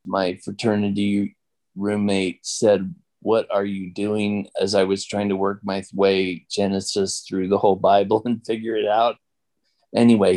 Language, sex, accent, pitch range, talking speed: English, male, American, 95-110 Hz, 150 wpm